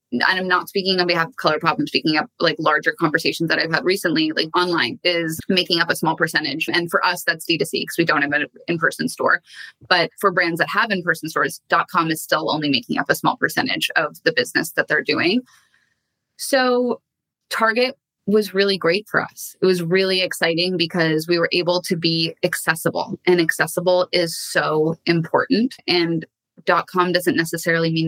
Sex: female